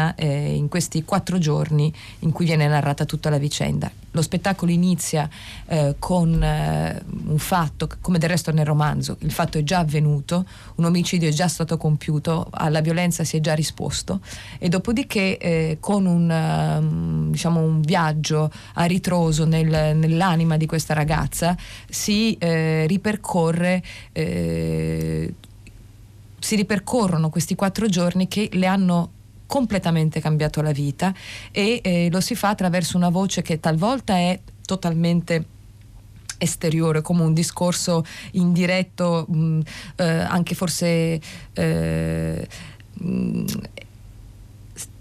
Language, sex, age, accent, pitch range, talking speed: Italian, female, 30-49, native, 150-180 Hz, 130 wpm